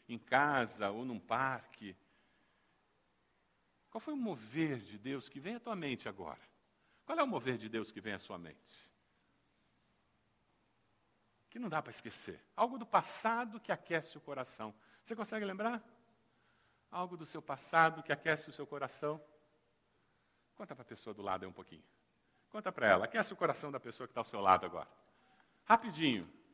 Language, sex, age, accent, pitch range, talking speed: Portuguese, male, 60-79, Brazilian, 130-190 Hz, 170 wpm